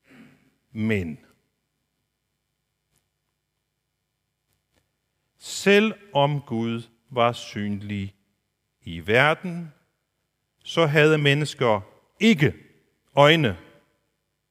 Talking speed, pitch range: 50 wpm, 120-180 Hz